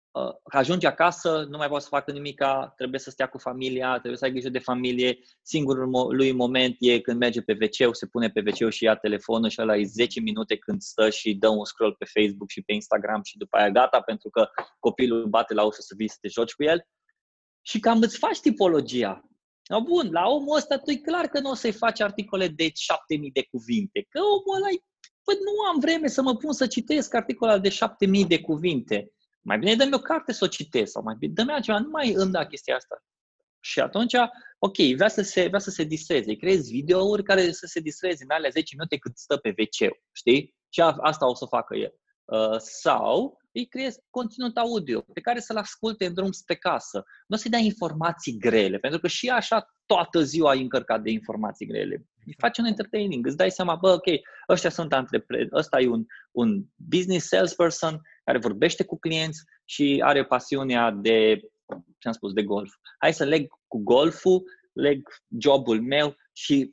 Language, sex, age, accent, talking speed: Romanian, male, 20-39, native, 205 wpm